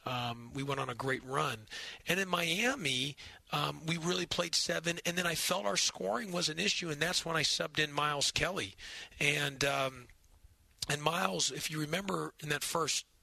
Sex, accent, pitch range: male, American, 135-165 Hz